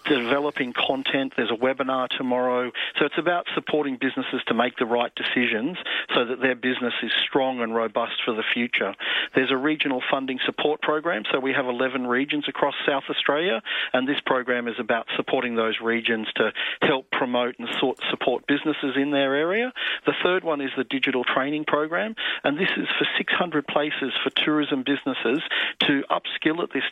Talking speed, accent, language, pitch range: 175 wpm, Australian, English, 120-145 Hz